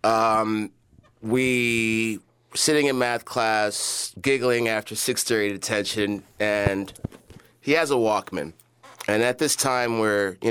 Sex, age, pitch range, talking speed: male, 30-49, 105-120 Hz, 125 wpm